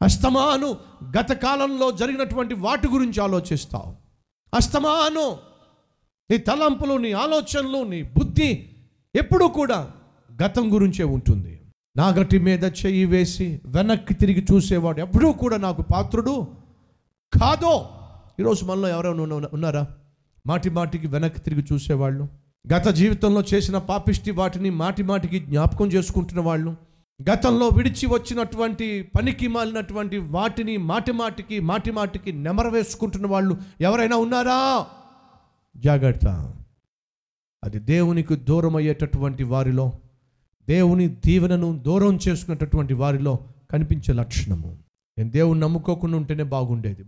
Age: 50-69